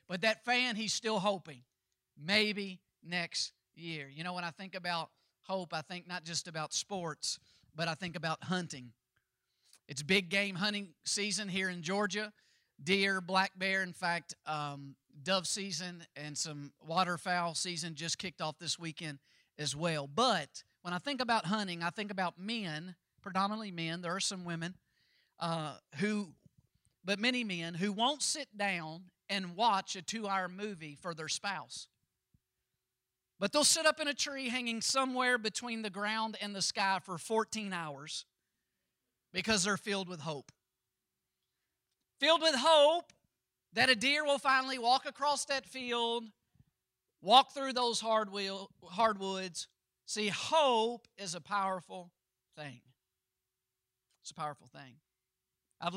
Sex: male